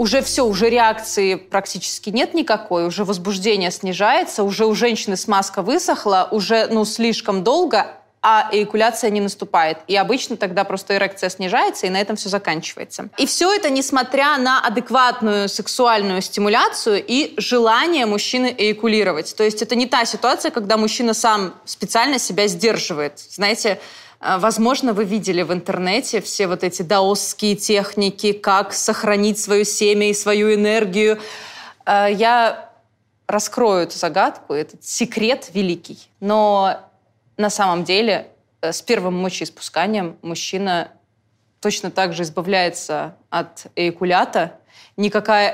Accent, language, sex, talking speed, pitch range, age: native, Russian, female, 130 wpm, 195-230 Hz, 20-39